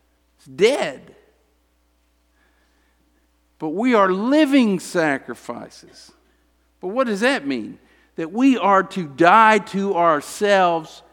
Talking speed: 95 wpm